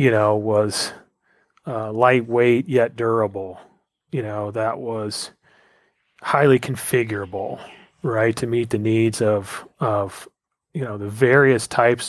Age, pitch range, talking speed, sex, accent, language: 30-49, 110-130 Hz, 125 wpm, male, American, English